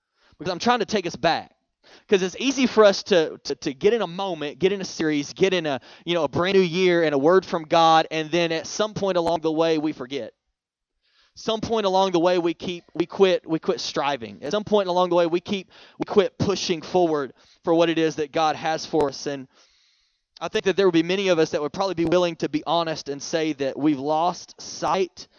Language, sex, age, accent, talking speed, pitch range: English, male, 20-39, American, 245 wpm, 155-190 Hz